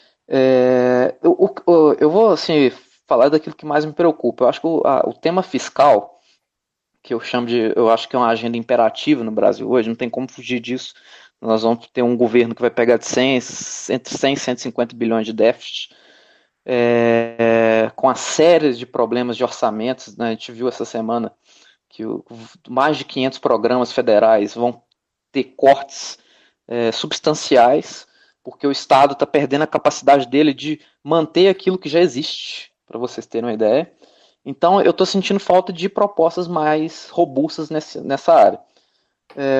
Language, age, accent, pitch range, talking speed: Portuguese, 20-39, Brazilian, 120-155 Hz, 175 wpm